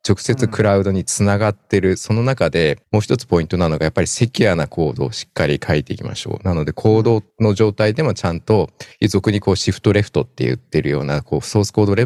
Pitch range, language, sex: 85-110 Hz, Japanese, male